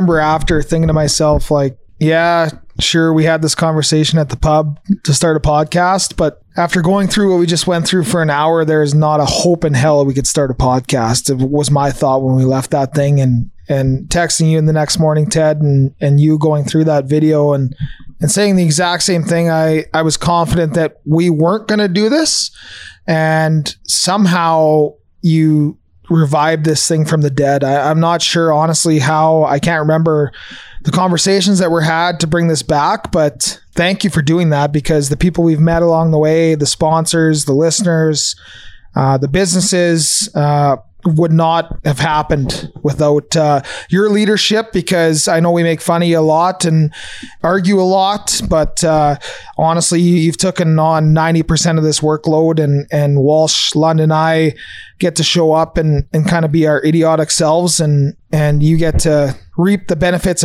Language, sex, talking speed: English, male, 185 wpm